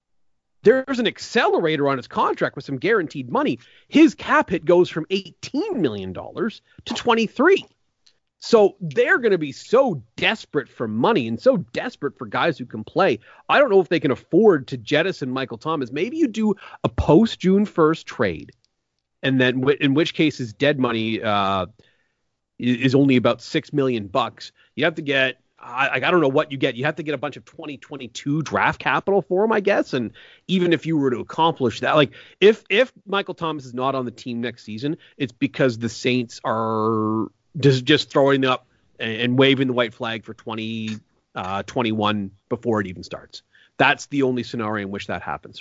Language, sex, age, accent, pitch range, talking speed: English, male, 30-49, American, 120-165 Hz, 190 wpm